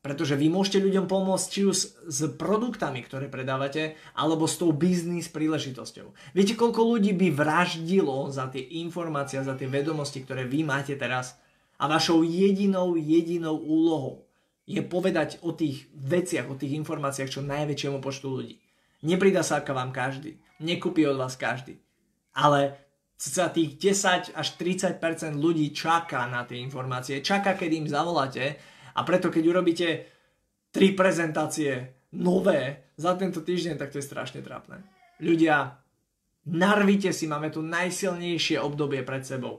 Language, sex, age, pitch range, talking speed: Slovak, male, 20-39, 140-180 Hz, 145 wpm